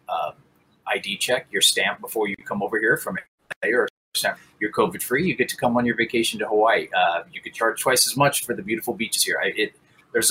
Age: 30-49